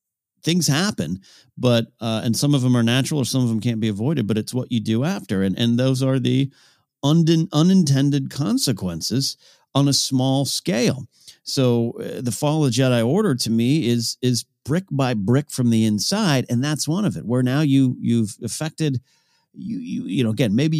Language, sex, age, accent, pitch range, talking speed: English, male, 40-59, American, 105-150 Hz, 200 wpm